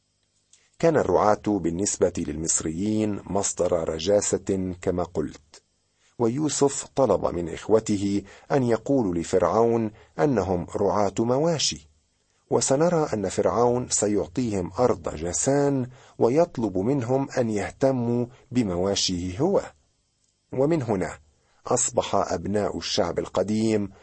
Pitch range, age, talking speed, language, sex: 90-125 Hz, 50-69, 90 wpm, Arabic, male